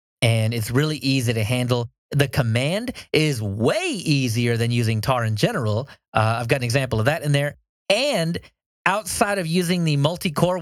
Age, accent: 30-49, American